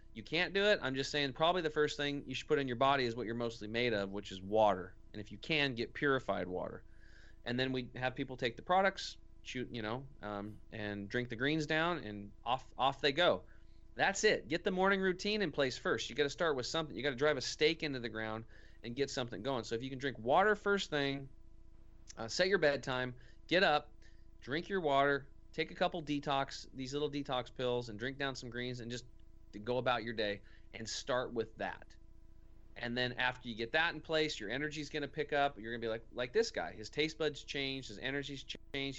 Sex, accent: male, American